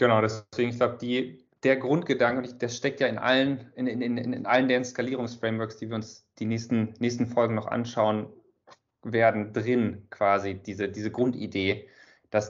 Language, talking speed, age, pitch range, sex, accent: German, 175 wpm, 30-49, 110-130 Hz, male, German